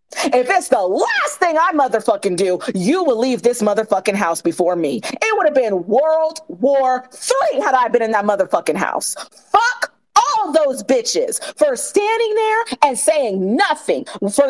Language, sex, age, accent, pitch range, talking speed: English, female, 40-59, American, 270-420 Hz, 170 wpm